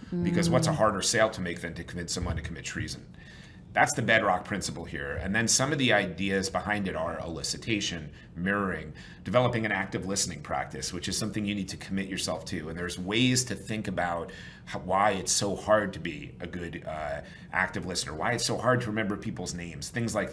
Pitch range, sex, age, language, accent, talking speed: 90-110 Hz, male, 30-49, English, American, 215 wpm